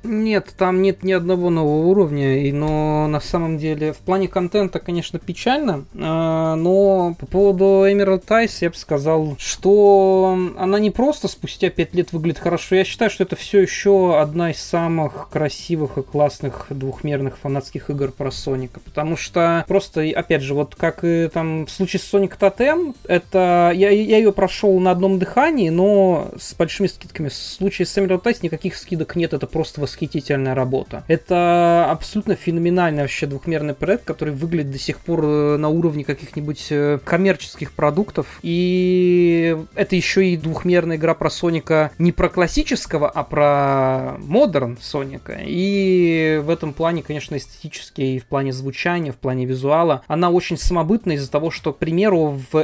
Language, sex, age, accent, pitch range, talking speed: Russian, male, 20-39, native, 150-185 Hz, 160 wpm